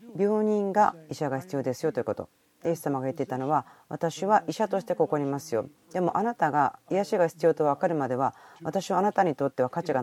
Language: Japanese